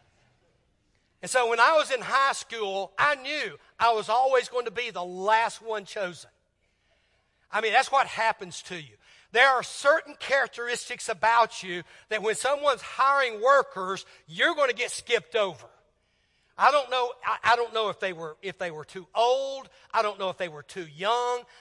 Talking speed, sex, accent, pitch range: 185 wpm, male, American, 140-225 Hz